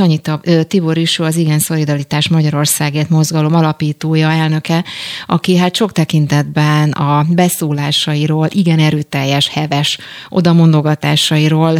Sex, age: female, 30-49